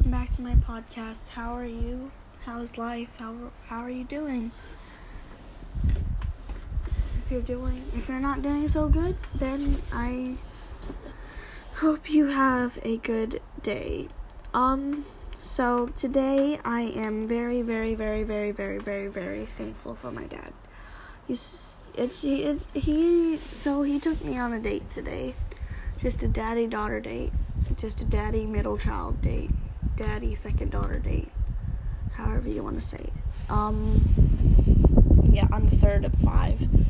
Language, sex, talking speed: English, female, 145 wpm